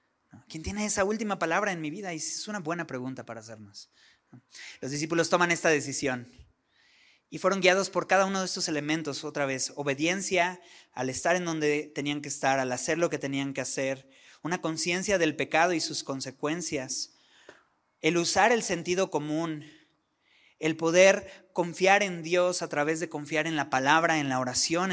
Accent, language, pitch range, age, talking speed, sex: Mexican, Spanish, 135-175 Hz, 30-49, 175 wpm, male